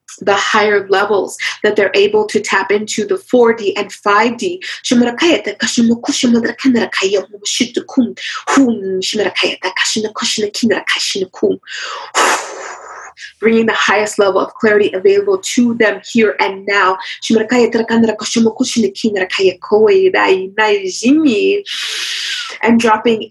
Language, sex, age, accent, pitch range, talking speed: English, female, 30-49, American, 200-255 Hz, 70 wpm